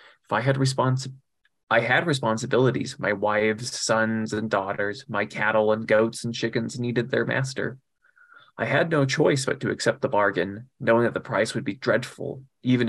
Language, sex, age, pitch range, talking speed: English, male, 20-39, 110-125 Hz, 165 wpm